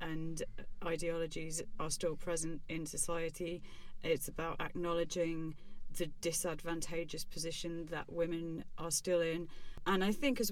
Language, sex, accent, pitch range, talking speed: English, female, British, 150-170 Hz, 125 wpm